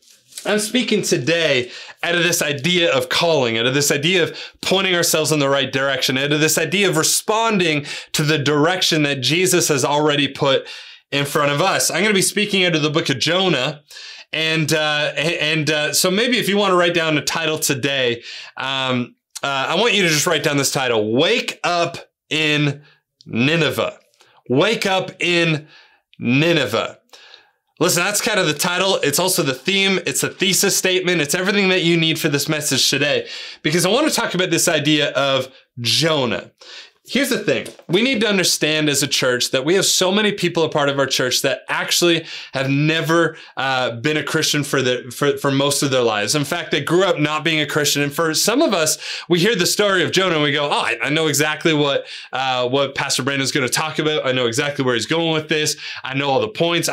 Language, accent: English, American